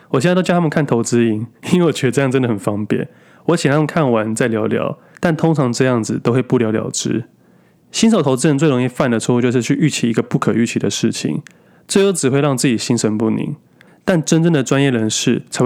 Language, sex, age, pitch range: Chinese, male, 20-39, 115-155 Hz